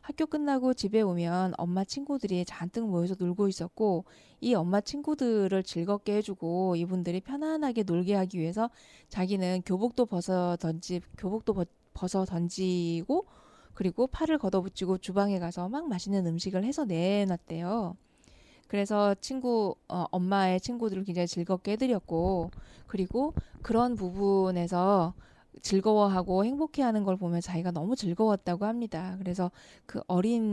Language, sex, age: Korean, female, 20-39